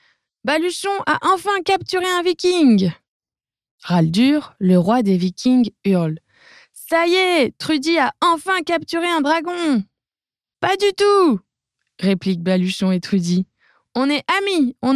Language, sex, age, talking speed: French, female, 20-39, 155 wpm